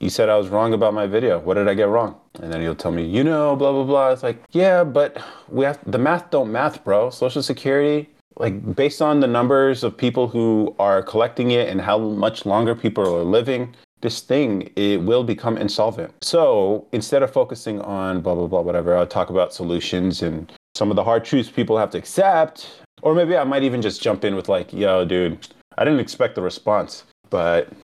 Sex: male